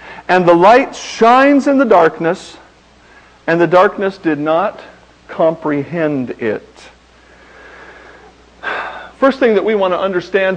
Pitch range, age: 170-225 Hz, 50-69